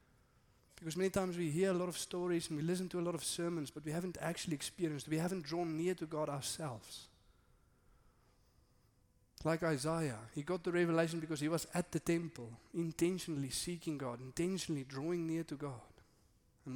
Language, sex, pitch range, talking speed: English, male, 140-175 Hz, 180 wpm